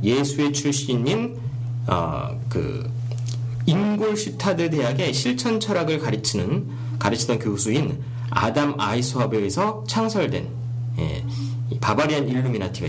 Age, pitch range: 40-59, 120-145 Hz